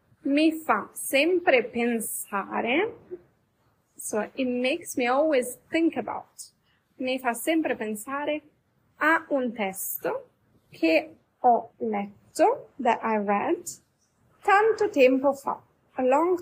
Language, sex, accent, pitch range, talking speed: Italian, female, native, 230-300 Hz, 105 wpm